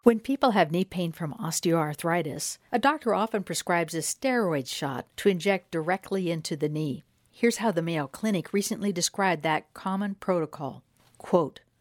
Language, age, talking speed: English, 60-79, 160 wpm